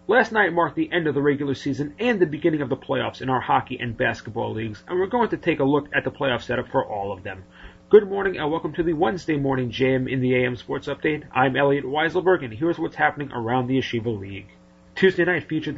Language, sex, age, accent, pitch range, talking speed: English, male, 30-49, American, 115-150 Hz, 245 wpm